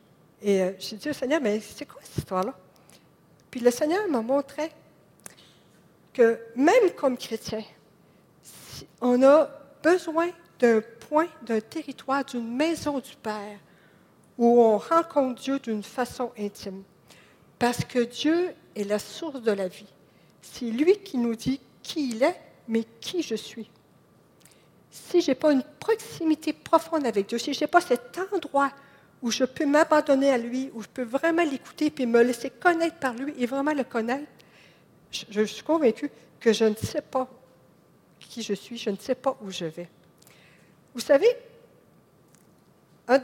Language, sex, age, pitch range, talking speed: French, female, 50-69, 205-280 Hz, 165 wpm